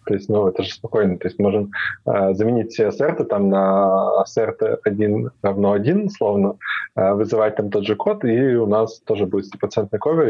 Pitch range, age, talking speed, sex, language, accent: 100-115 Hz, 20-39, 185 wpm, male, Russian, native